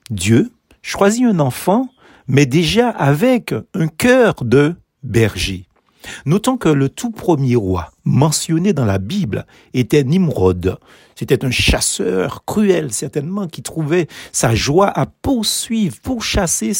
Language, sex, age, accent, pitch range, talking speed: French, male, 60-79, French, 125-190 Hz, 130 wpm